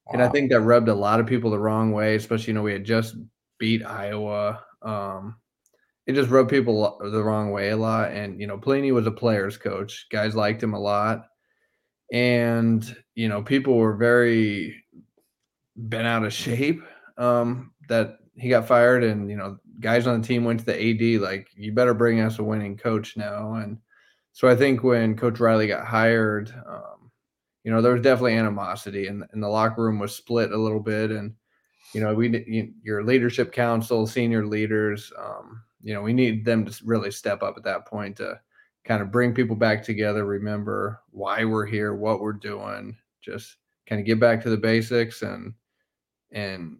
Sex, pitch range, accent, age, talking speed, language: male, 105-120 Hz, American, 20-39, 190 wpm, English